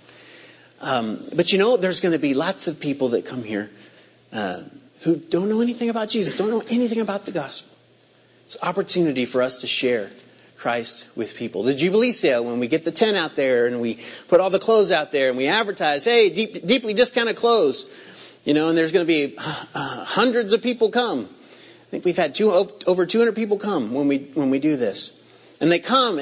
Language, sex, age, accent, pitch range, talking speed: English, male, 40-59, American, 155-230 Hz, 215 wpm